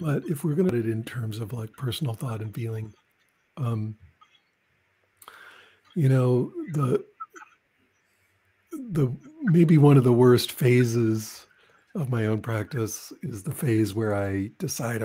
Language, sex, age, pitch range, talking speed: English, male, 60-79, 115-160 Hz, 145 wpm